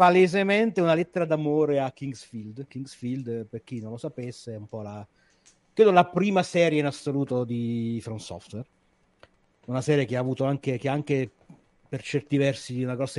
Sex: male